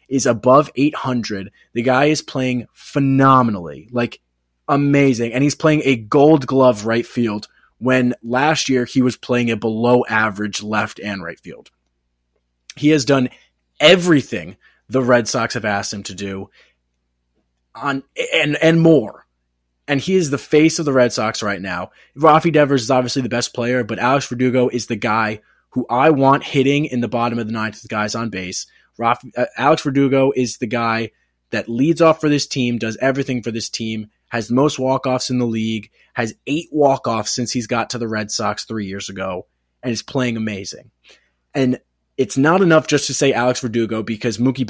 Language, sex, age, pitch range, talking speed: English, male, 20-39, 110-135 Hz, 185 wpm